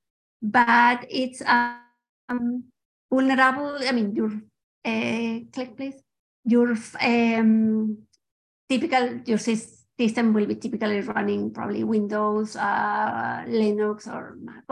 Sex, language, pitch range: female, English, 220-255 Hz